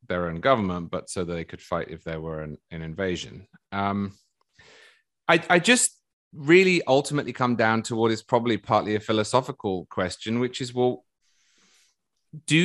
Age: 30-49